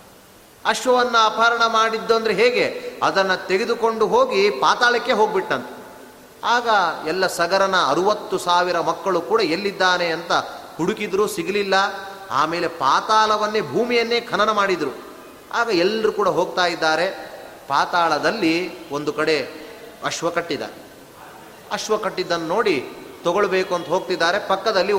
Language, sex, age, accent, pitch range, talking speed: Kannada, male, 30-49, native, 160-210 Hz, 100 wpm